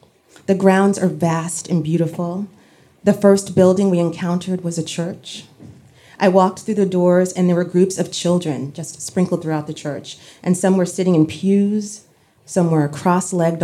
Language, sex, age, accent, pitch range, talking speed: English, female, 30-49, American, 155-195 Hz, 170 wpm